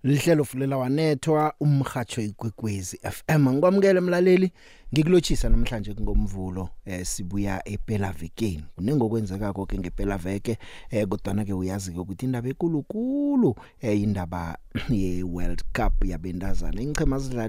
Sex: male